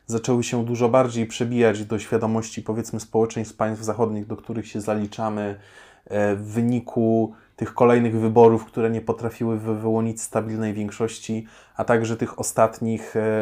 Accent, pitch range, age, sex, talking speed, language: native, 110-125 Hz, 20-39, male, 135 wpm, Polish